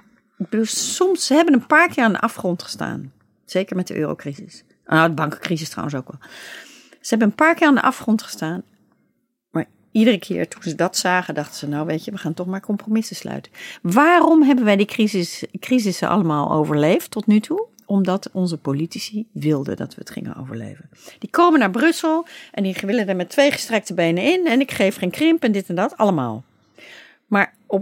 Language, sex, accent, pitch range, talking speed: Dutch, female, Dutch, 170-265 Hz, 200 wpm